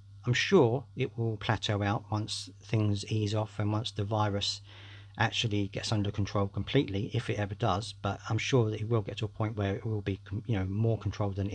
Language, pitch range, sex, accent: English, 100-115 Hz, male, British